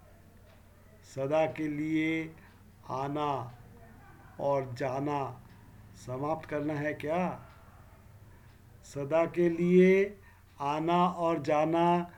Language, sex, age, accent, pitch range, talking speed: Hindi, male, 50-69, native, 100-165 Hz, 80 wpm